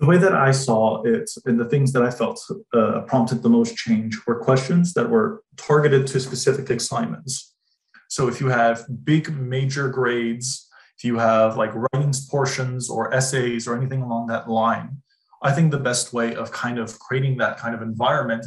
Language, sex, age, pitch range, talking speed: English, male, 20-39, 120-160 Hz, 190 wpm